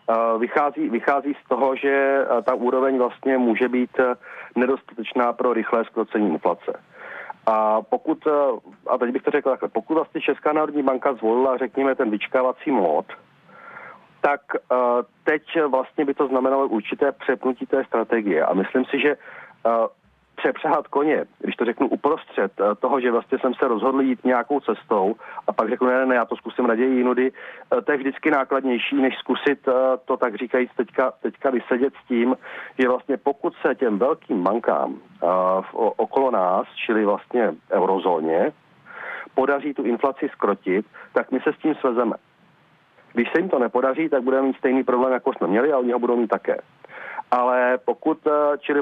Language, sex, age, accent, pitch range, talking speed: Czech, male, 40-59, native, 120-140 Hz, 160 wpm